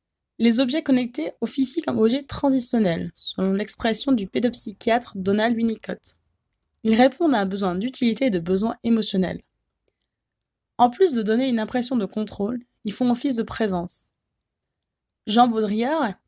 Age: 20-39